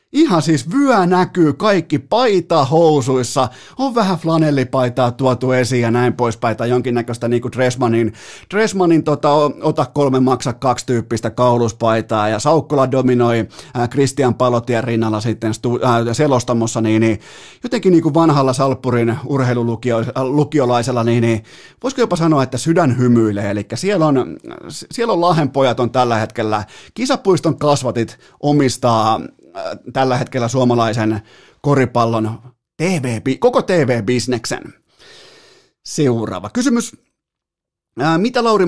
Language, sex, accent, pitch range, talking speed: Finnish, male, native, 120-155 Hz, 120 wpm